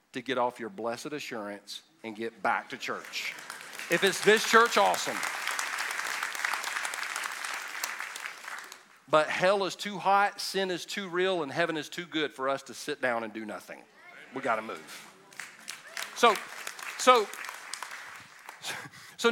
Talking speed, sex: 140 wpm, male